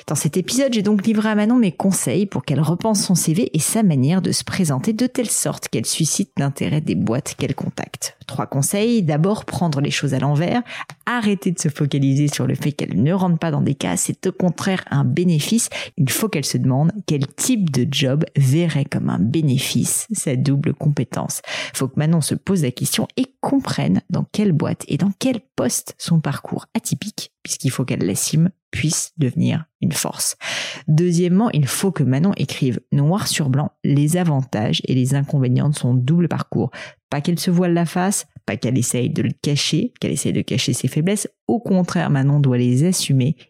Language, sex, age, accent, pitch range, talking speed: French, female, 30-49, French, 140-185 Hz, 200 wpm